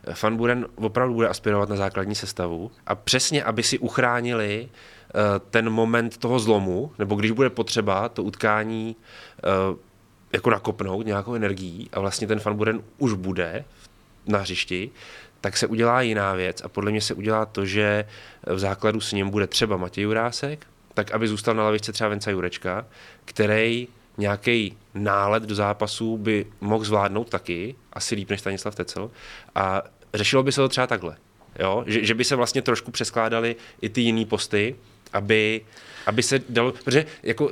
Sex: male